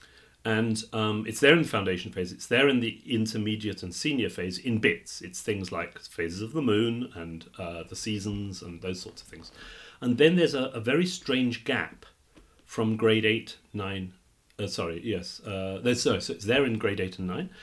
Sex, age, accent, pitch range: male, 40-59, British, 95-120 Hz